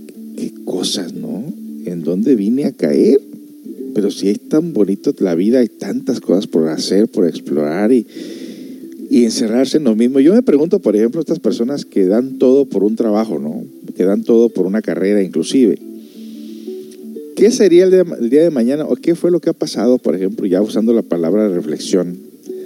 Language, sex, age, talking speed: Spanish, male, 50-69, 185 wpm